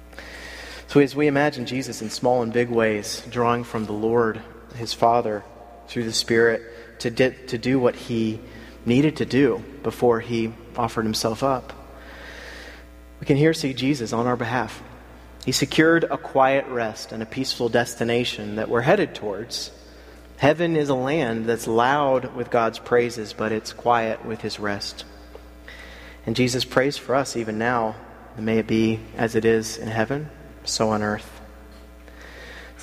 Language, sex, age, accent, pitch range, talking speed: English, male, 30-49, American, 100-120 Hz, 160 wpm